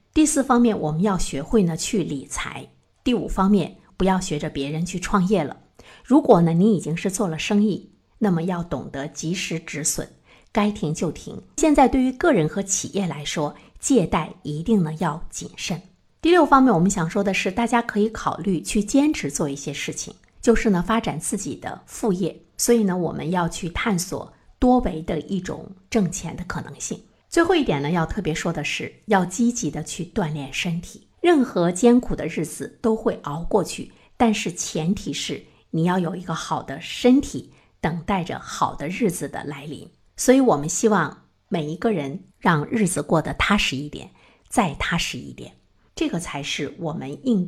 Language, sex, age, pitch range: Chinese, female, 50-69, 160-220 Hz